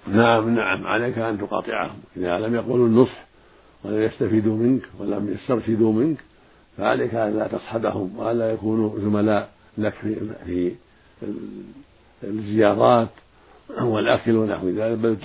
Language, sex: Arabic, male